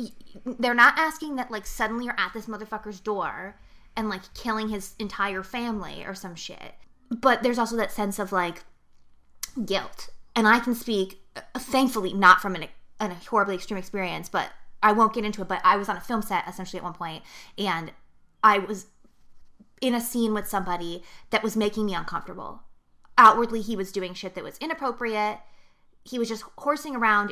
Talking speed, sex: 180 wpm, female